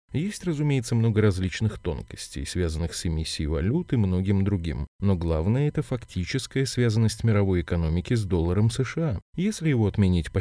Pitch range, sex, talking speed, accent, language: 90-120 Hz, male, 150 wpm, native, Russian